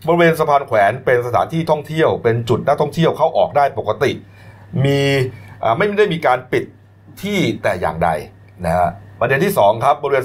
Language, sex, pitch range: Thai, male, 100-150 Hz